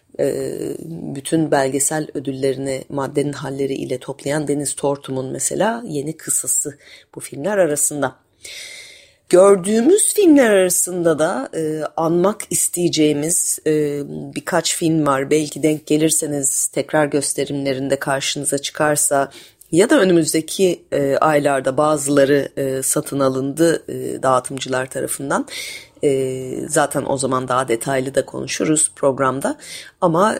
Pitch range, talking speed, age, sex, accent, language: 140-170 Hz, 100 wpm, 30-49, female, native, Turkish